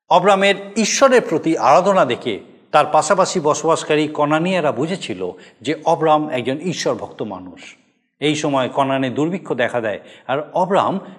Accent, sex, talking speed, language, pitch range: native, male, 130 wpm, Bengali, 155-205 Hz